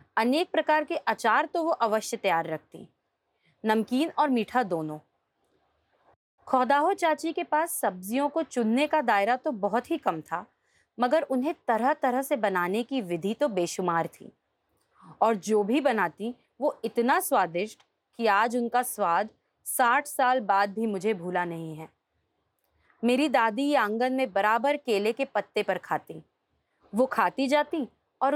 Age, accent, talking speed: 30-49, native, 150 wpm